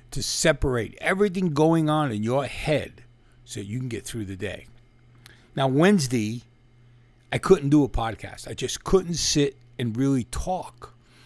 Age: 50-69